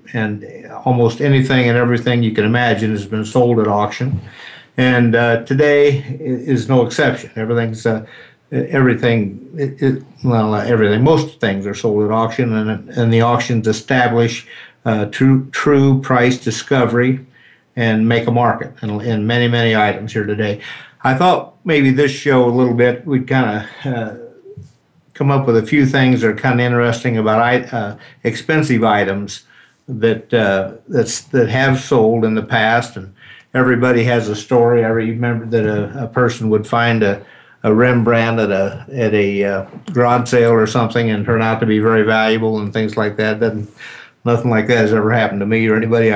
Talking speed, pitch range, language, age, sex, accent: 175 wpm, 110-125 Hz, English, 60-79, male, American